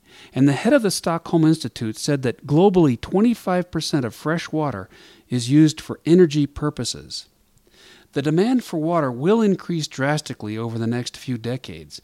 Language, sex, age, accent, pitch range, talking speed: English, male, 40-59, American, 125-170 Hz, 155 wpm